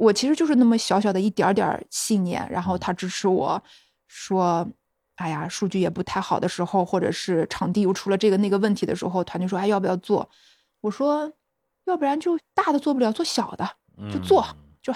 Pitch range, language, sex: 185-225 Hz, Chinese, female